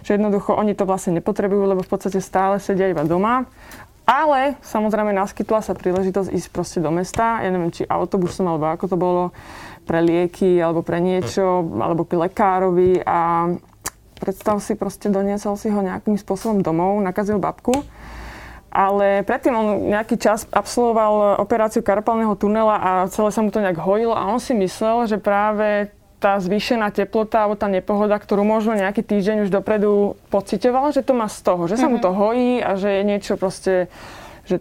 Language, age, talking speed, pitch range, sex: Slovak, 20-39, 175 wpm, 185-220 Hz, female